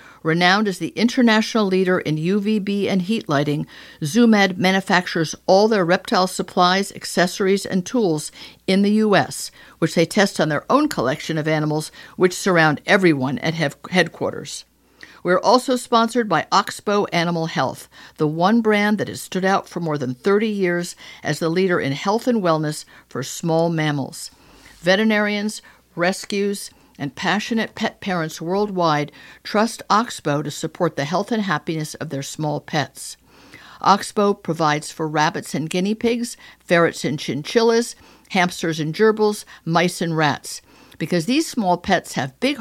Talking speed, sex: 150 wpm, female